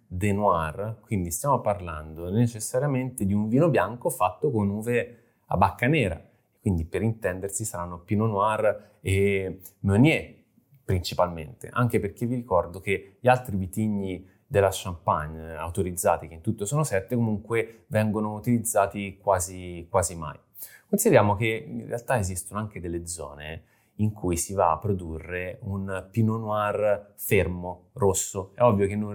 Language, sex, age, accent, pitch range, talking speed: Italian, male, 30-49, native, 95-120 Hz, 145 wpm